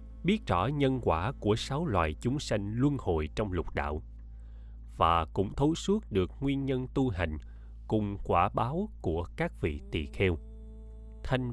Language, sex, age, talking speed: Vietnamese, male, 20-39, 165 wpm